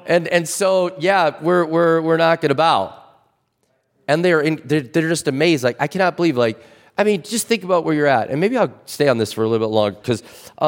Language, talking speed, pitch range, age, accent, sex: English, 235 wpm, 140-205 Hz, 30-49, American, male